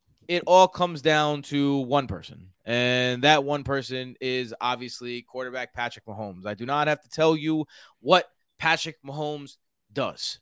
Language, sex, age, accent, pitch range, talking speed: English, male, 20-39, American, 125-160 Hz, 155 wpm